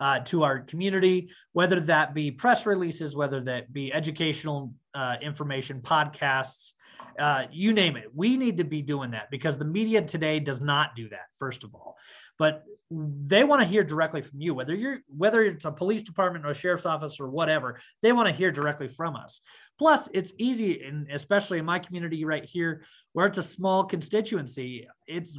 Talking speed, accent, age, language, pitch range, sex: 190 wpm, American, 20-39, English, 135-185 Hz, male